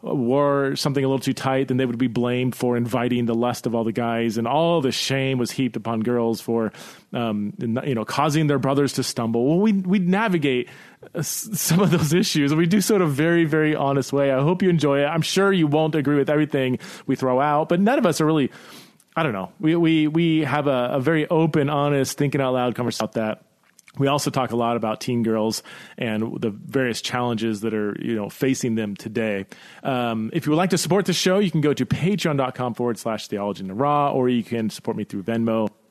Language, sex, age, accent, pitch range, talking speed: English, male, 30-49, American, 120-155 Hz, 235 wpm